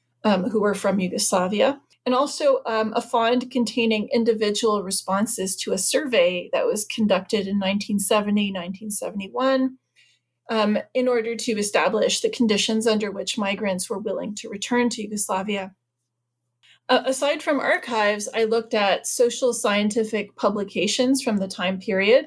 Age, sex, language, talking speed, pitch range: 30-49, female, English, 135 wpm, 200-250 Hz